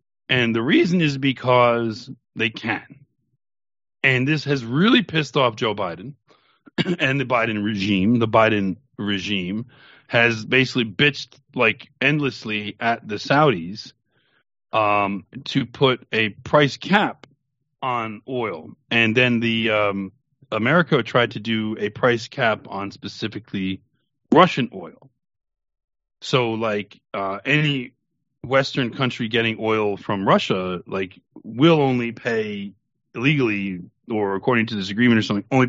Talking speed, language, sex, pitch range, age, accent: 130 wpm, English, male, 105-135 Hz, 40-59, American